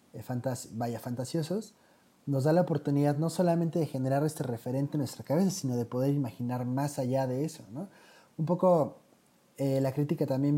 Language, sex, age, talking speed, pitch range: Spanish, male, 30-49, 175 wpm, 125-150 Hz